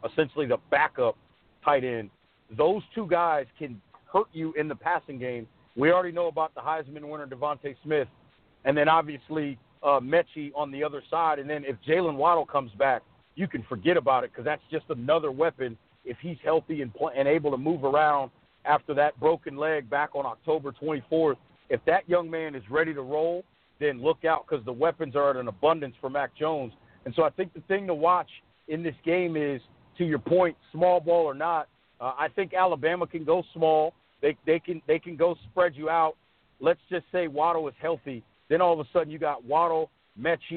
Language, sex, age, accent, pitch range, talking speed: English, male, 50-69, American, 145-170 Hz, 205 wpm